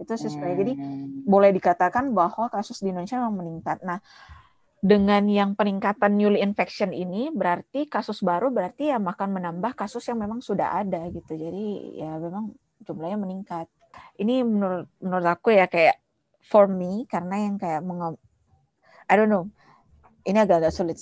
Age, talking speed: 20-39, 155 wpm